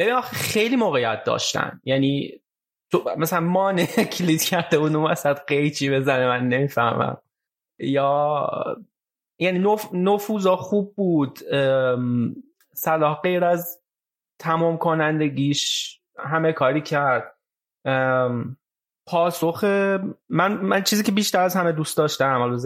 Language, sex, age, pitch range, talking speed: Persian, male, 20-39, 135-170 Hz, 110 wpm